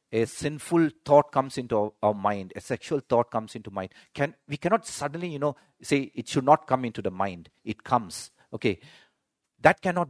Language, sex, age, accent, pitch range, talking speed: English, male, 50-69, Indian, 105-140 Hz, 190 wpm